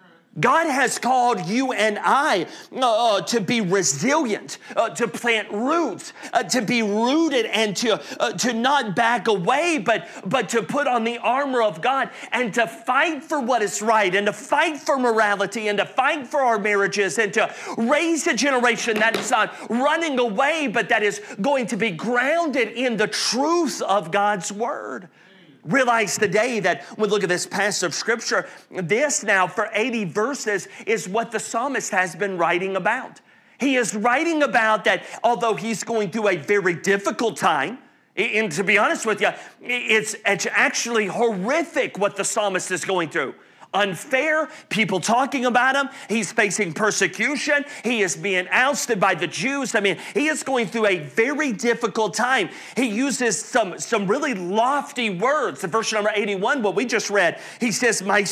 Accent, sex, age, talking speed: American, male, 40-59, 175 wpm